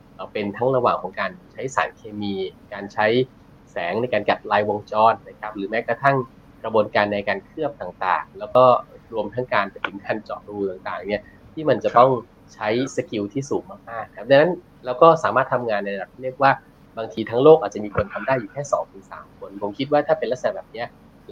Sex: male